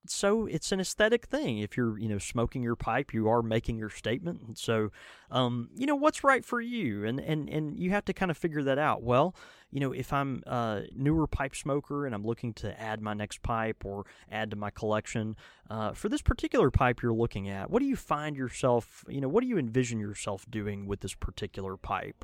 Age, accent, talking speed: 20-39, American, 225 wpm